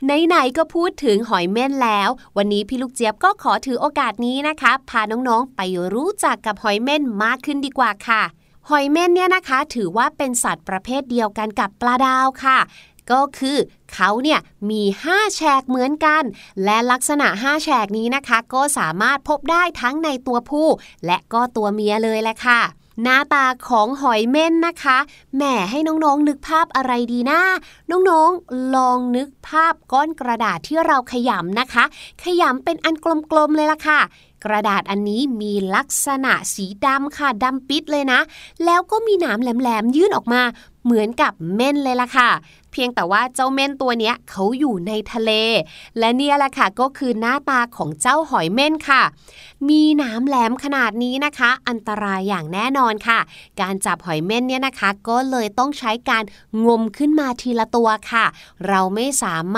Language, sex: Thai, female